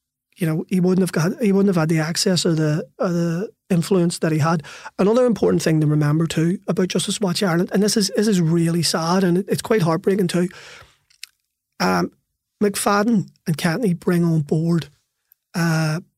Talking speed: 185 wpm